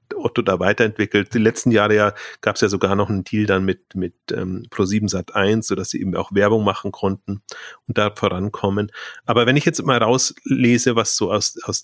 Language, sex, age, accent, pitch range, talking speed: German, male, 30-49, German, 105-120 Hz, 220 wpm